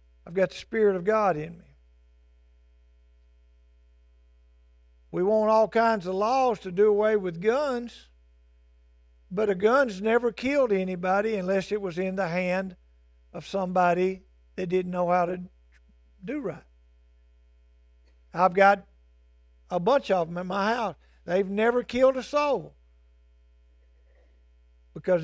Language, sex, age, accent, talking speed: English, male, 50-69, American, 130 wpm